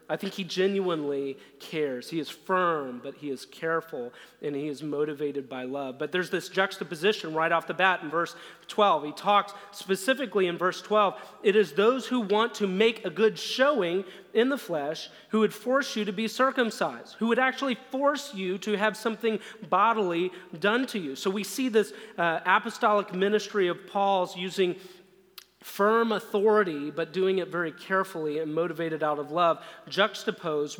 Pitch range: 170-215 Hz